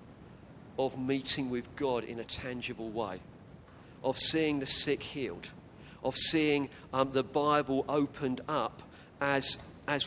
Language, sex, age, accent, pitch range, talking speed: English, male, 40-59, British, 125-145 Hz, 130 wpm